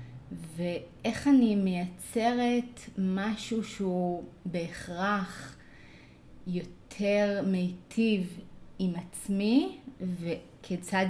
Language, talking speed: Hebrew, 60 wpm